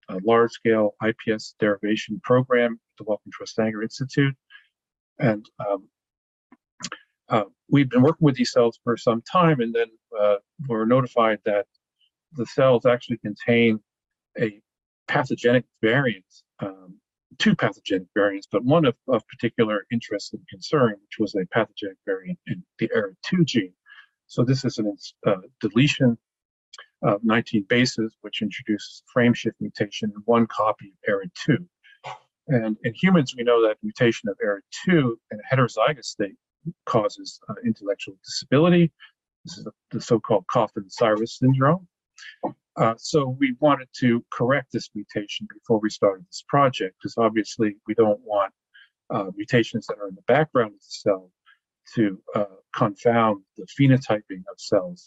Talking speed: 150 wpm